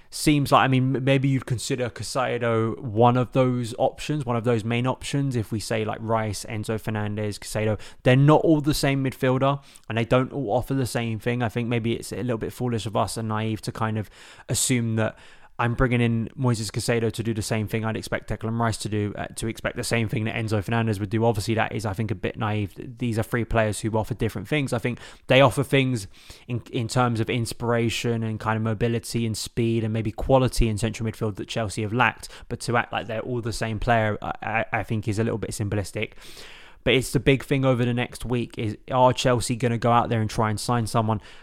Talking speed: 240 wpm